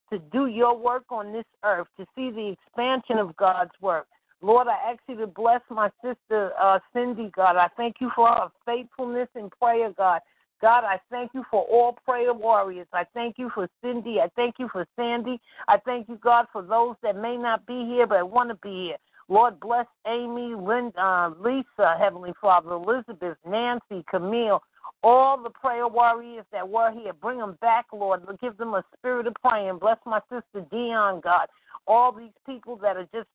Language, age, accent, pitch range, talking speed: English, 50-69, American, 195-240 Hz, 190 wpm